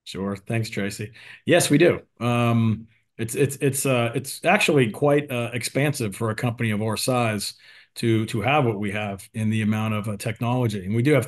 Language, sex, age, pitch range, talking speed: English, male, 40-59, 110-125 Hz, 200 wpm